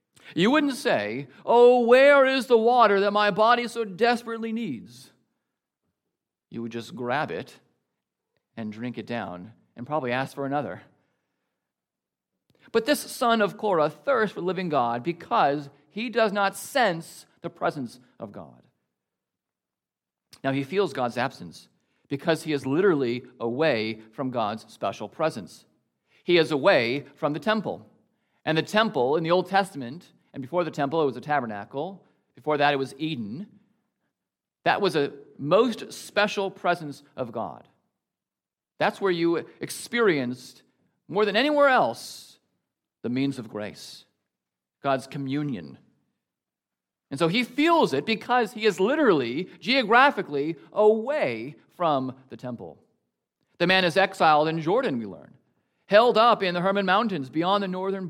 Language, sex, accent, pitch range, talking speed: English, male, American, 135-215 Hz, 145 wpm